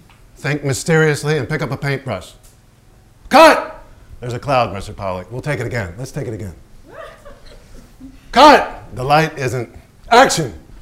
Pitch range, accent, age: 115-170 Hz, American, 50-69